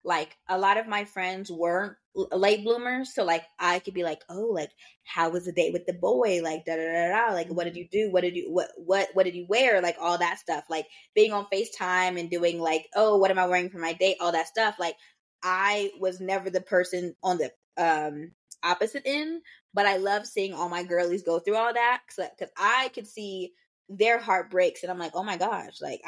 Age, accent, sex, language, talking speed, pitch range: 20-39, American, female, English, 230 wpm, 170-205 Hz